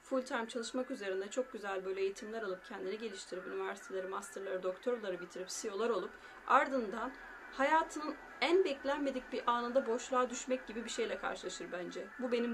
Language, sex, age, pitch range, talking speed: Turkish, female, 30-49, 205-290 Hz, 155 wpm